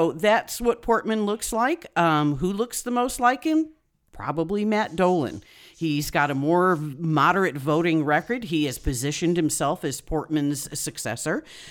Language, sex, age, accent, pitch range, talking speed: English, female, 50-69, American, 140-180 Hz, 150 wpm